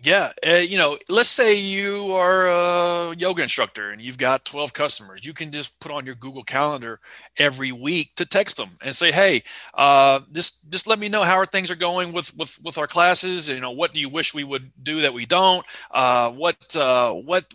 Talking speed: 220 wpm